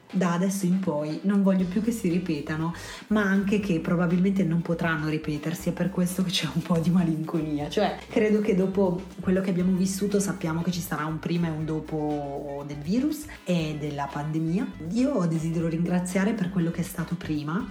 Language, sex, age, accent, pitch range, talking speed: Italian, female, 30-49, native, 160-190 Hz, 195 wpm